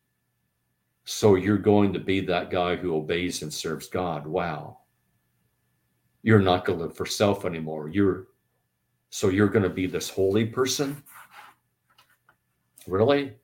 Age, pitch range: 50-69, 85-115 Hz